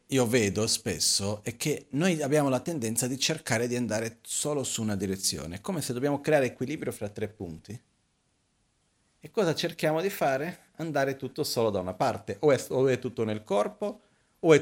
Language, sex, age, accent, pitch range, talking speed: Italian, male, 40-59, native, 95-130 Hz, 180 wpm